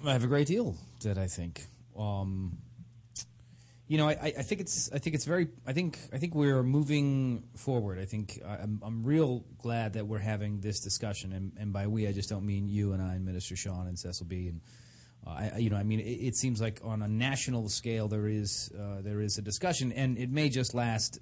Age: 30-49